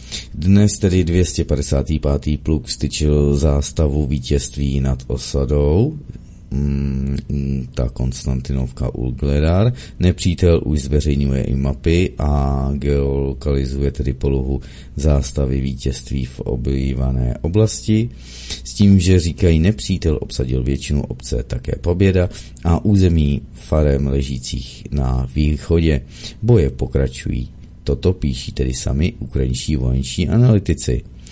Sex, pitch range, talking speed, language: male, 65-80 Hz, 100 wpm, Czech